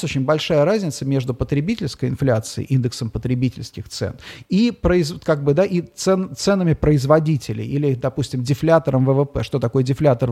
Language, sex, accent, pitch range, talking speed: Russian, male, native, 130-165 Hz, 140 wpm